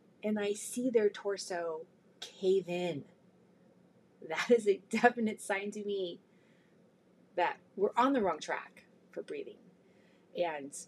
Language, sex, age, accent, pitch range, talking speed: English, female, 30-49, American, 180-240 Hz, 125 wpm